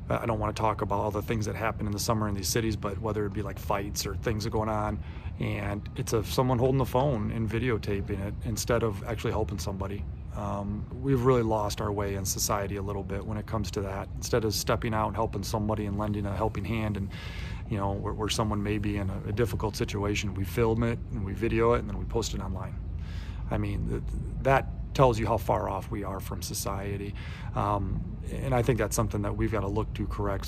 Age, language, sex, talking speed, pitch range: 30-49, English, male, 240 wpm, 100-115 Hz